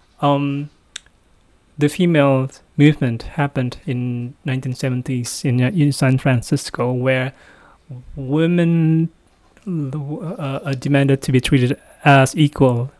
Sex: male